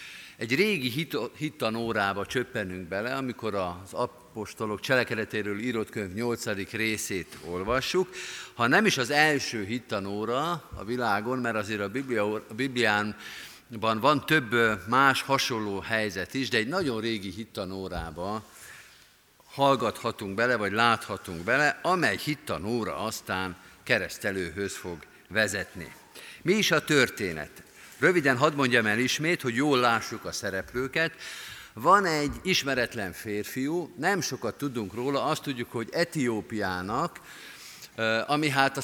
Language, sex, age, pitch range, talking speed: Hungarian, male, 50-69, 105-135 Hz, 120 wpm